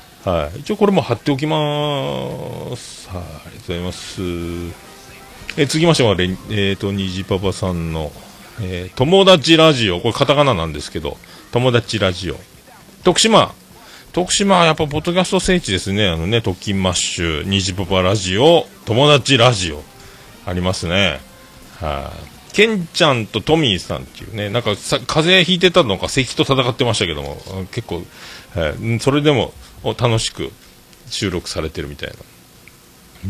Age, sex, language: 40-59, male, Japanese